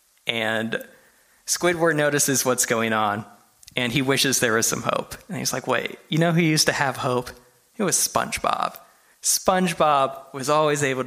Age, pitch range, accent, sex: 20-39, 120-145 Hz, American, male